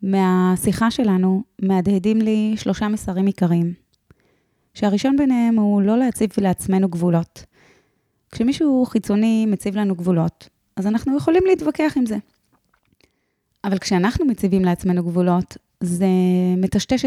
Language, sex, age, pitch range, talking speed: Hebrew, female, 20-39, 190-230 Hz, 115 wpm